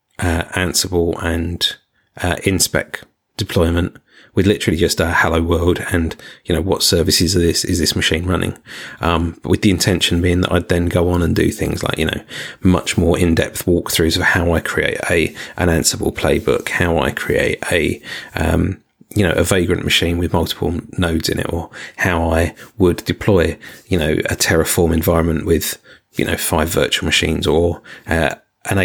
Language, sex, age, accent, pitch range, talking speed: English, male, 30-49, British, 85-95 Hz, 180 wpm